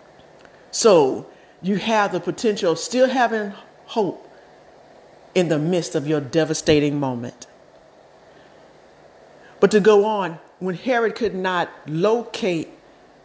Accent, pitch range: American, 165-220 Hz